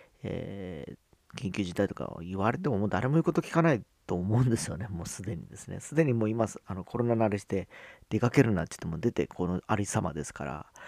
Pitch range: 90-120 Hz